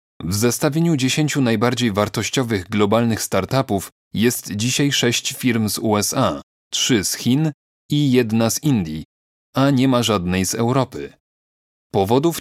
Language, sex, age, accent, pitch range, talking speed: Polish, male, 30-49, native, 105-130 Hz, 130 wpm